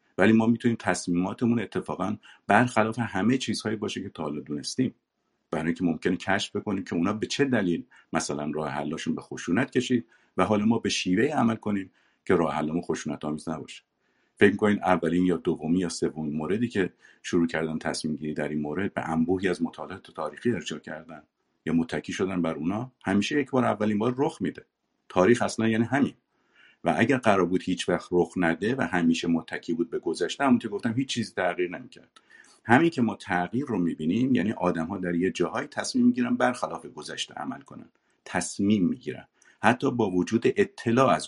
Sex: male